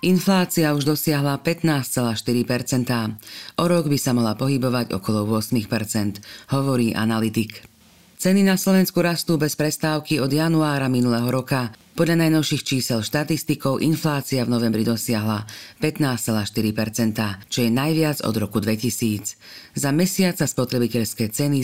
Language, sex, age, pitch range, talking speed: Slovak, female, 40-59, 110-150 Hz, 120 wpm